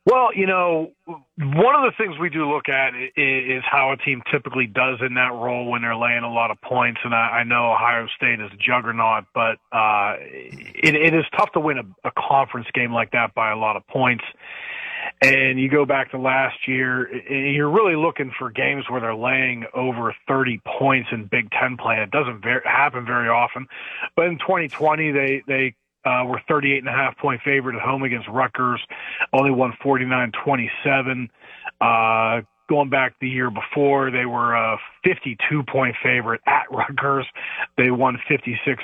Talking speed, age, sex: 180 wpm, 30-49, male